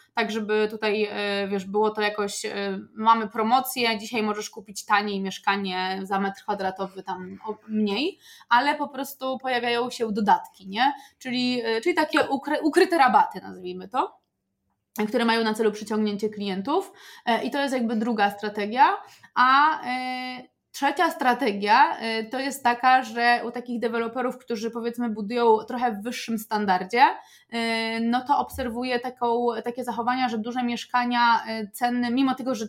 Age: 20-39